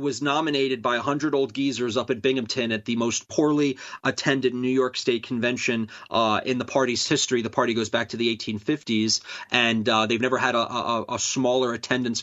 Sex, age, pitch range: male, 30-49, 115-135 Hz